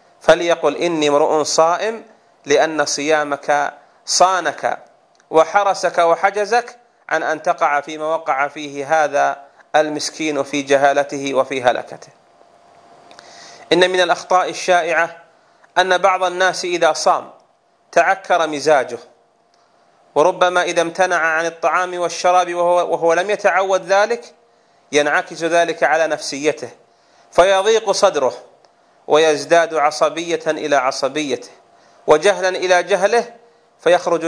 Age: 30-49